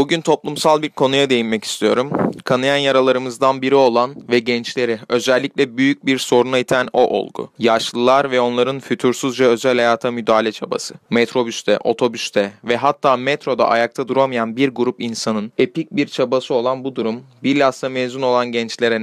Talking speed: 150 wpm